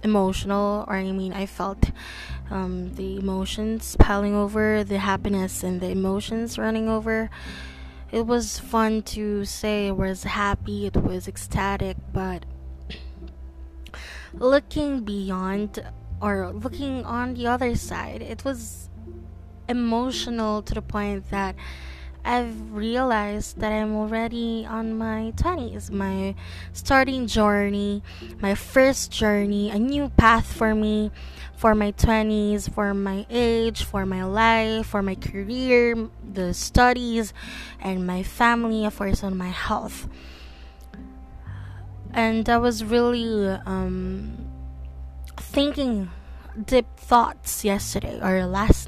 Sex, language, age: female, English, 20-39